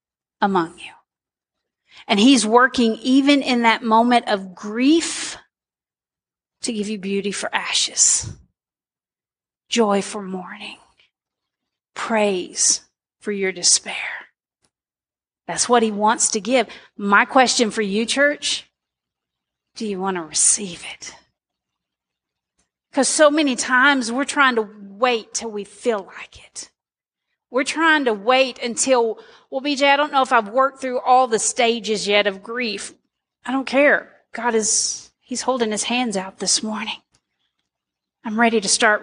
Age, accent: 40-59, American